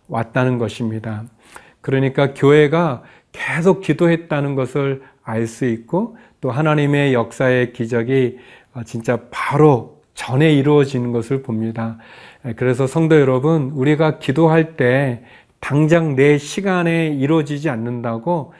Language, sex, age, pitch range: Korean, male, 40-59, 120-155 Hz